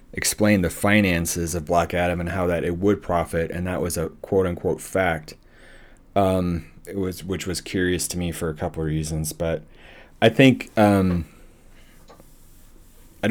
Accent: American